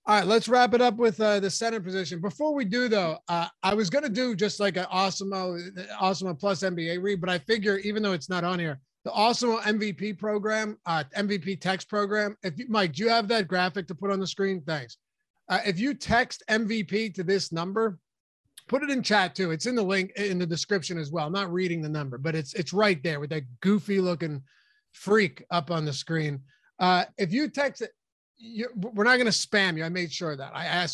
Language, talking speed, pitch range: English, 235 wpm, 180-215 Hz